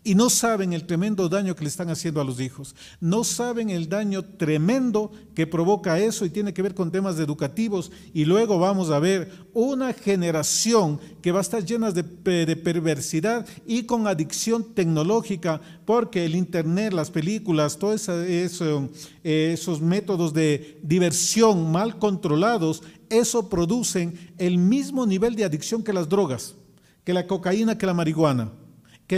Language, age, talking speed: Spanish, 40-59, 155 wpm